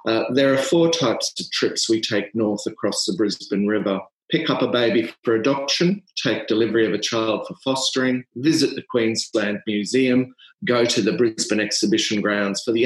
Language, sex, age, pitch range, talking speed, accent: English, male, 40-59, 100-125 Hz, 180 wpm, Australian